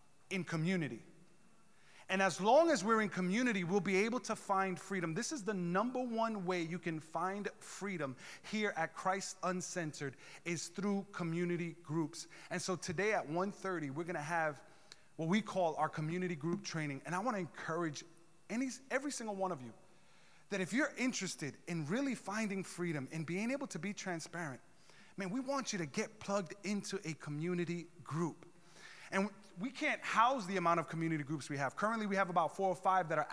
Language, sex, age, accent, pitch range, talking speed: English, male, 30-49, American, 170-225 Hz, 190 wpm